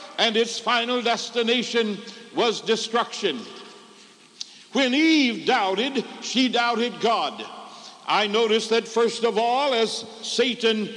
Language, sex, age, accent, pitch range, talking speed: English, male, 60-79, American, 220-250 Hz, 110 wpm